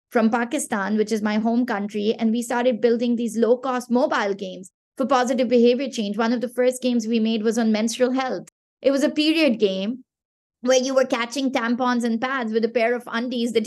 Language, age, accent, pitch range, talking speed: English, 20-39, Indian, 225-260 Hz, 210 wpm